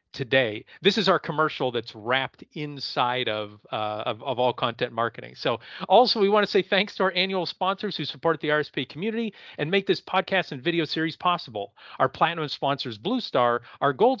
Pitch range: 135-195 Hz